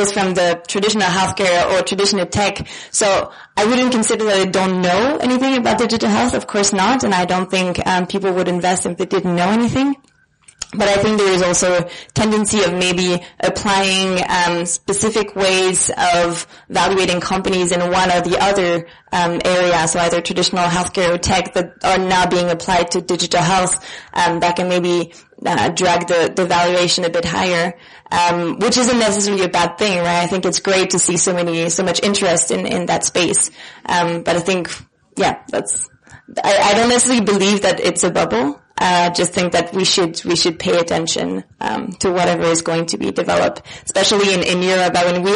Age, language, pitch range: 20-39, English, 175-195 Hz